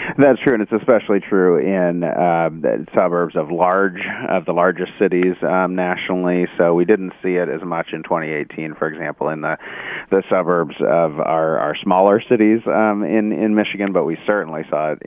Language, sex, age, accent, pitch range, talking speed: English, male, 40-59, American, 80-100 Hz, 185 wpm